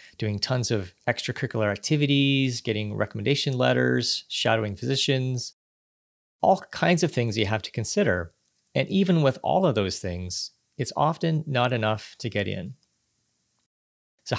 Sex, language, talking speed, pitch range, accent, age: male, English, 140 wpm, 110-145 Hz, American, 30-49